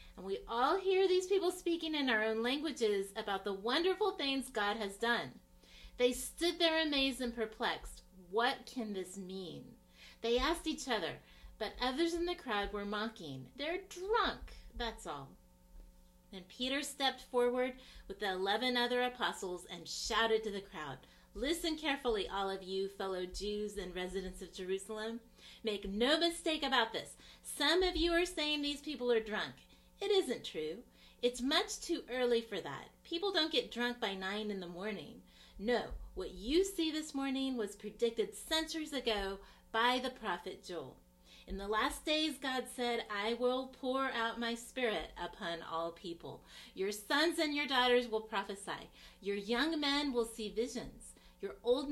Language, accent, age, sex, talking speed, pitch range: English, American, 30-49, female, 165 wpm, 200-280 Hz